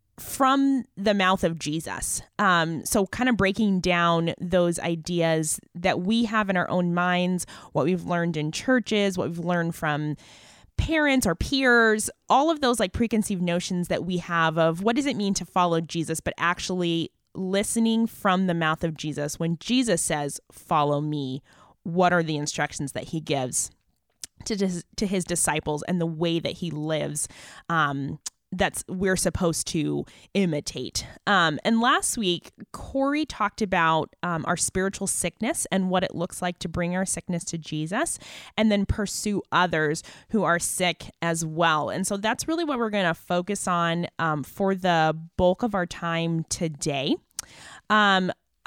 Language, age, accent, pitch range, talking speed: English, 20-39, American, 165-205 Hz, 170 wpm